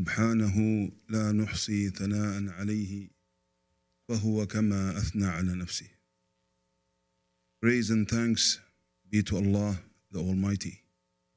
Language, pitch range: English, 90-110 Hz